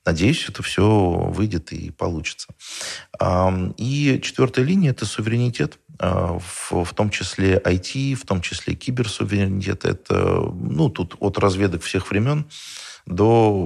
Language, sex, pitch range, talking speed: Russian, male, 85-110 Hz, 125 wpm